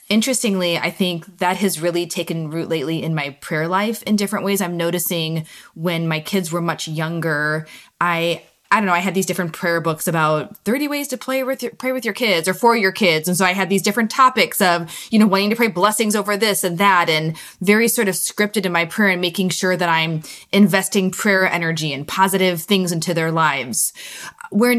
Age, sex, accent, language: 20-39, female, American, English